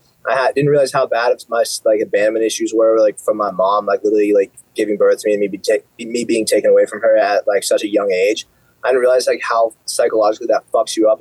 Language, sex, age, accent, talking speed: English, male, 20-39, American, 240 wpm